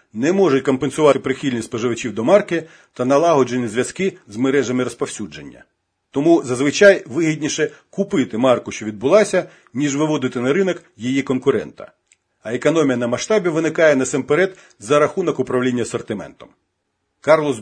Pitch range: 130-175 Hz